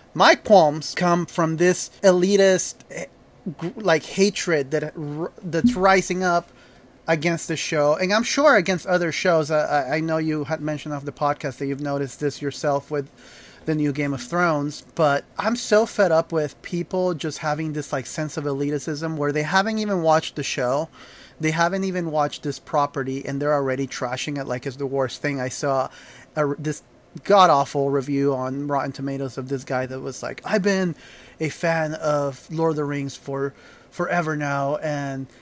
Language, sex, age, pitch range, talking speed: English, male, 30-49, 140-175 Hz, 180 wpm